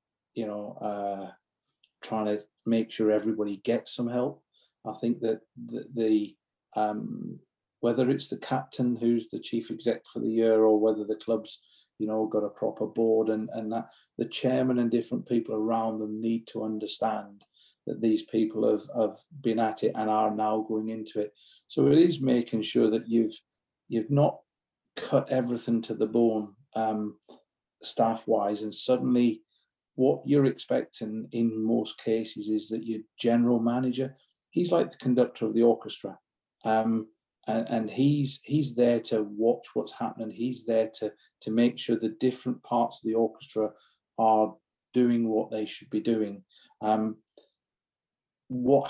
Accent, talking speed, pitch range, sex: British, 165 wpm, 110-120 Hz, male